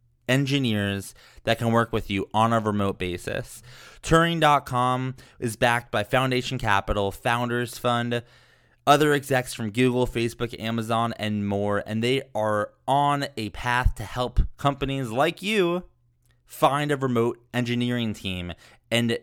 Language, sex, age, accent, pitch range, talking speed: English, male, 20-39, American, 105-130 Hz, 135 wpm